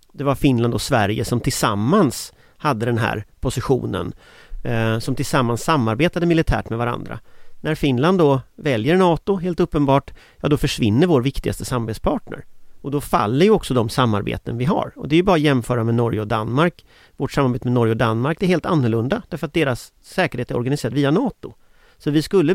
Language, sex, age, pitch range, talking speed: English, male, 40-59, 115-150 Hz, 185 wpm